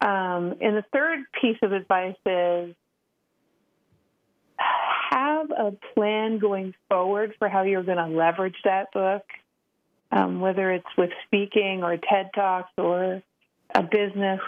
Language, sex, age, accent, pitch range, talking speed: English, female, 40-59, American, 175-200 Hz, 135 wpm